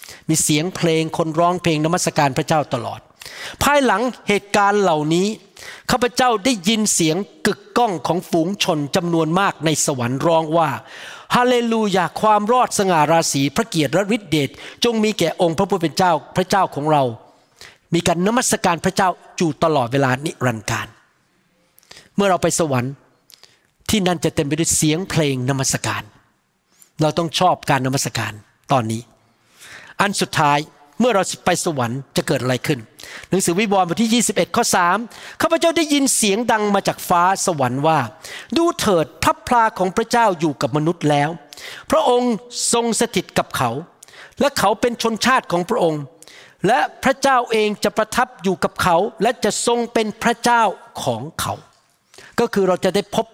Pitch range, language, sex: 155-215 Hz, Thai, male